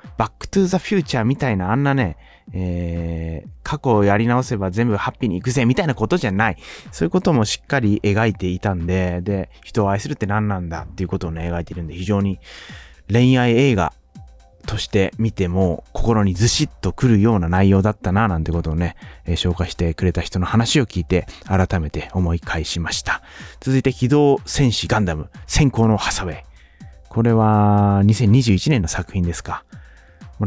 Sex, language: male, Japanese